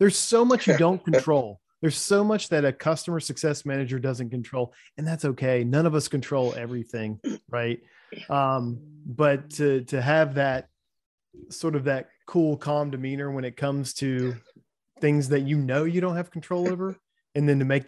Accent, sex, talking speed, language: American, male, 180 wpm, English